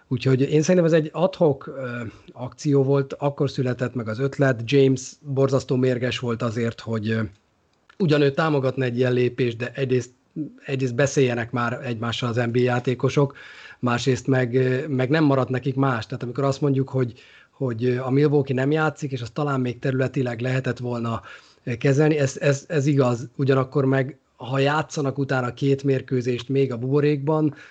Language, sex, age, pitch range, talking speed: Hungarian, male, 30-49, 120-140 Hz, 155 wpm